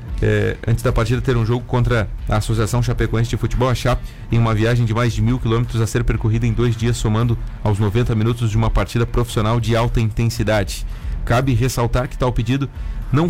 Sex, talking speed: male, 205 wpm